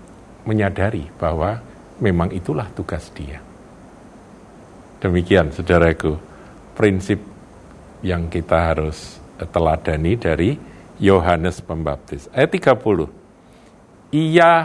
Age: 50-69